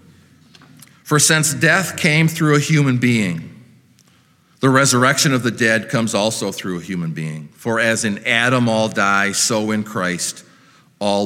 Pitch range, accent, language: 95-130 Hz, American, English